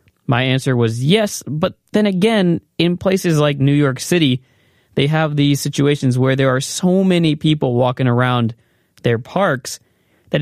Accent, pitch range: American, 120-160 Hz